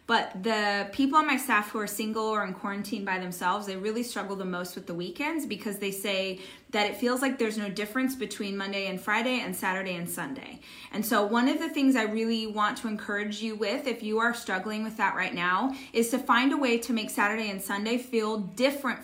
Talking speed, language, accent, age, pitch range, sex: 230 wpm, English, American, 20-39, 205-255 Hz, female